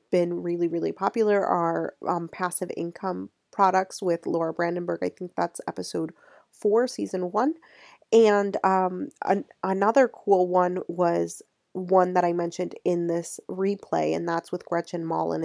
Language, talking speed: English, 150 wpm